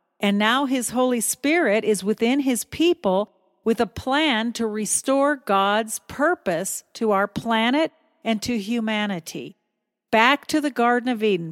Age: 50-69